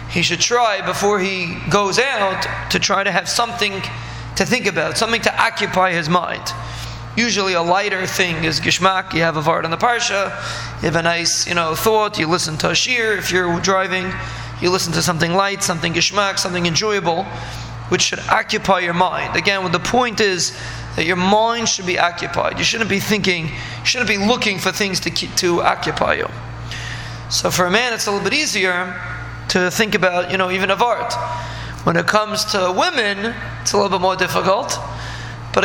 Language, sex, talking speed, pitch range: English, male, 195 wpm, 165-205 Hz